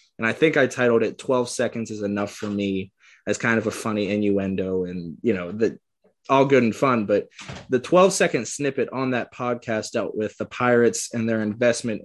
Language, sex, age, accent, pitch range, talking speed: English, male, 20-39, American, 105-125 Hz, 205 wpm